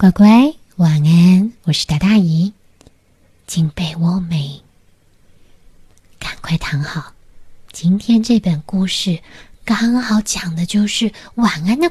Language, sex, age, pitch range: Chinese, female, 20-39, 150-215 Hz